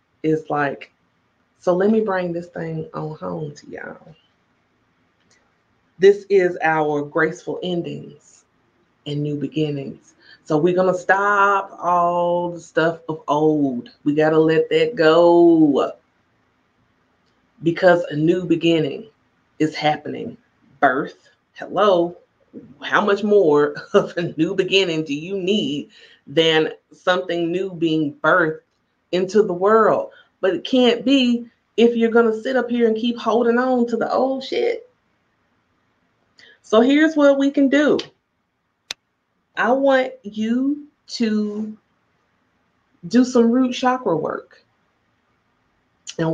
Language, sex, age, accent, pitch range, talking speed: English, female, 30-49, American, 160-225 Hz, 125 wpm